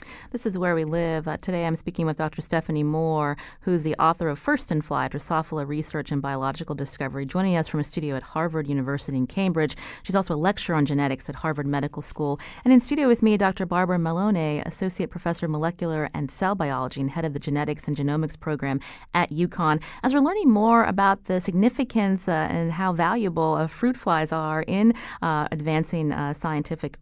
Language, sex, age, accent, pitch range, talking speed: English, female, 30-49, American, 150-190 Hz, 200 wpm